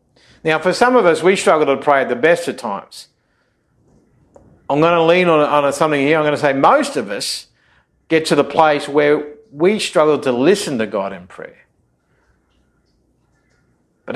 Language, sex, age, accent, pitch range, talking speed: English, male, 50-69, Australian, 140-170 Hz, 180 wpm